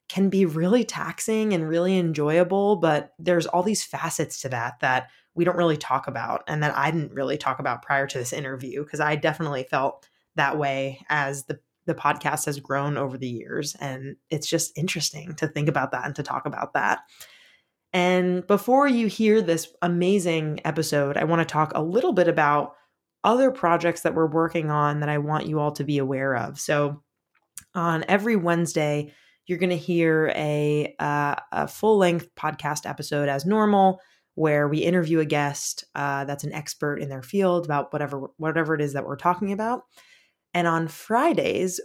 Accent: American